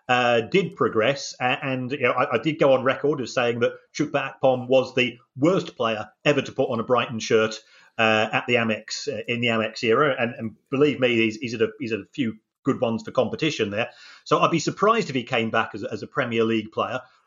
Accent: British